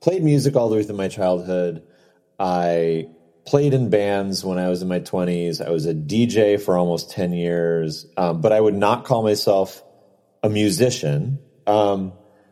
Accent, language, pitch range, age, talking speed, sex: American, English, 90-115 Hz, 30-49, 175 wpm, male